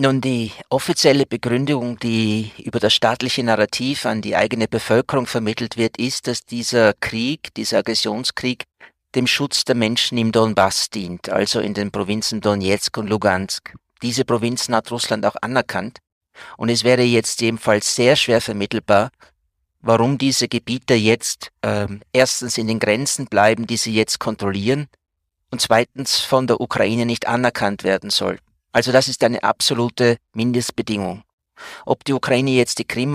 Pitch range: 110-125 Hz